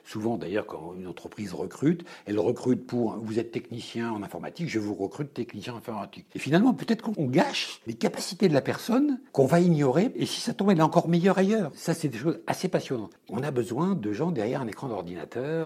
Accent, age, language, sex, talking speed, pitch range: French, 60-79, French, male, 215 wpm, 115-170 Hz